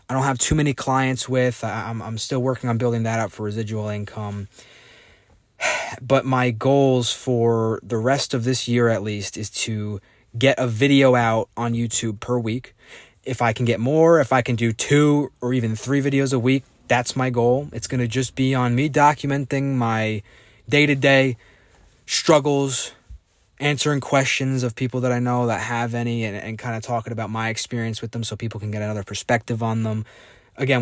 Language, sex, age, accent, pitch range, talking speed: English, male, 20-39, American, 110-130 Hz, 195 wpm